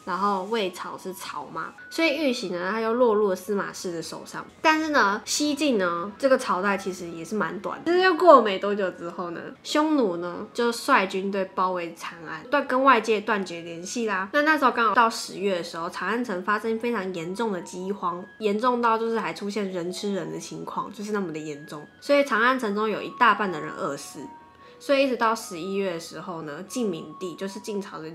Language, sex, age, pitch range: Chinese, female, 20-39, 175-225 Hz